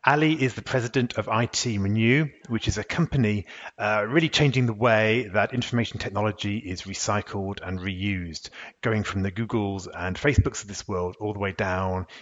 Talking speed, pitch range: 175 wpm, 100-130 Hz